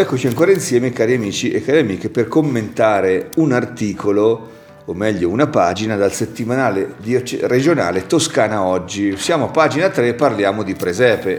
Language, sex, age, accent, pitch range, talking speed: Italian, male, 40-59, native, 110-140 Hz, 150 wpm